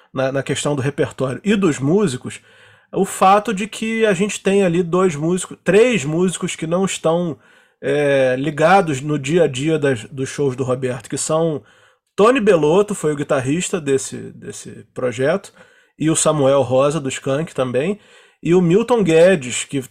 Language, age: Portuguese, 20-39